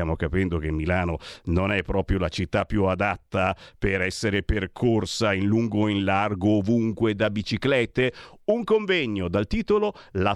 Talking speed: 155 wpm